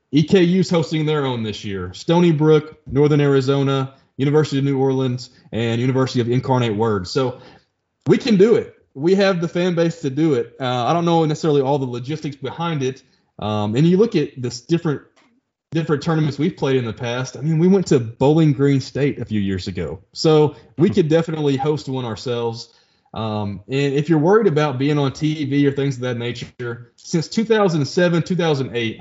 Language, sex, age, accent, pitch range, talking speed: English, male, 20-39, American, 120-160 Hz, 190 wpm